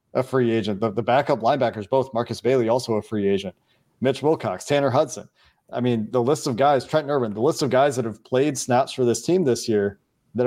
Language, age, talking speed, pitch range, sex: English, 40-59, 230 wpm, 110-130 Hz, male